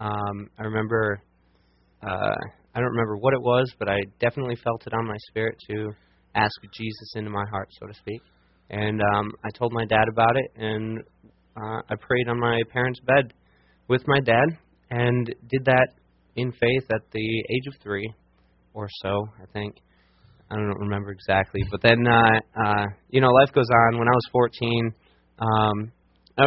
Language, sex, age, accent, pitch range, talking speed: English, male, 20-39, American, 95-115 Hz, 180 wpm